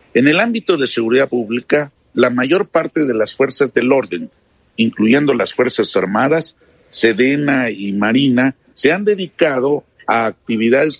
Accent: Mexican